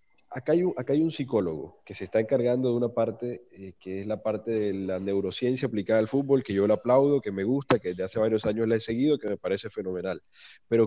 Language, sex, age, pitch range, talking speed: Spanish, male, 20-39, 110-130 Hz, 250 wpm